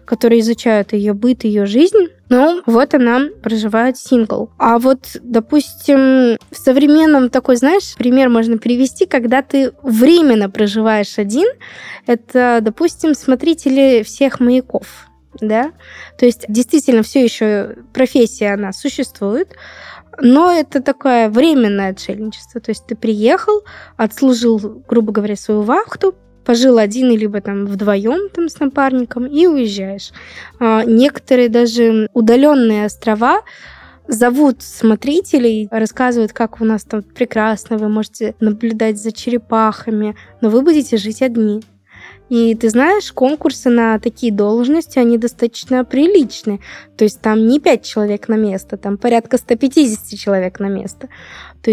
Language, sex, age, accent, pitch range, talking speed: Russian, female, 20-39, native, 220-265 Hz, 130 wpm